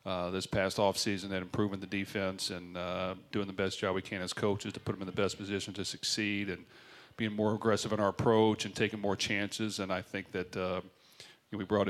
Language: English